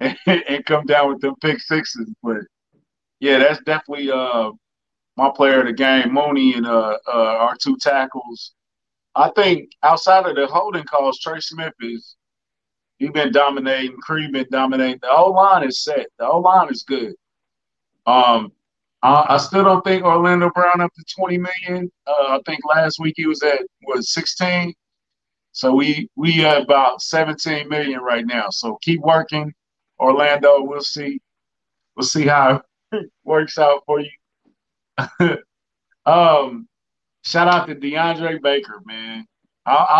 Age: 40-59